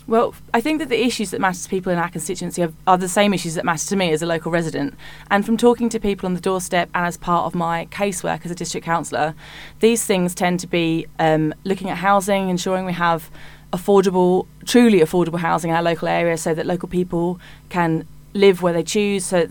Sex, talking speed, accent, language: female, 230 wpm, British, English